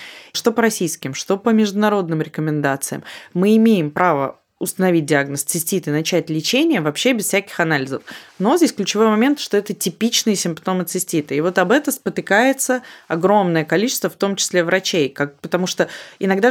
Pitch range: 165-220 Hz